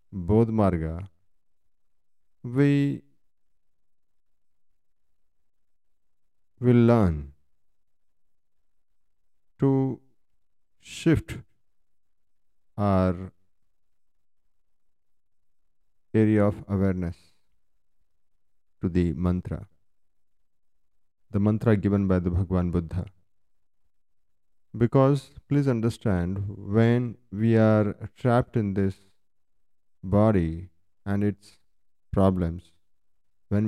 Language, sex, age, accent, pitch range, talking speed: Hindi, male, 50-69, native, 85-110 Hz, 60 wpm